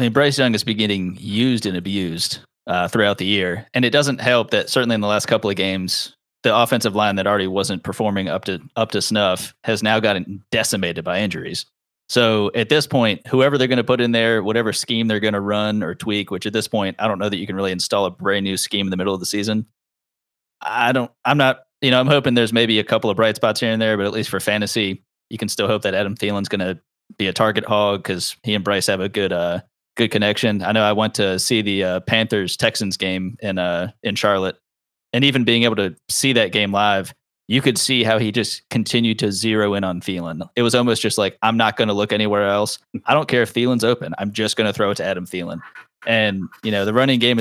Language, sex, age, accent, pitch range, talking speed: English, male, 30-49, American, 100-120 Hz, 255 wpm